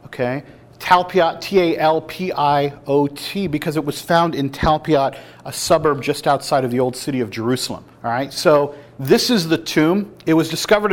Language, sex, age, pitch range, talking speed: English, male, 40-59, 135-170 Hz, 160 wpm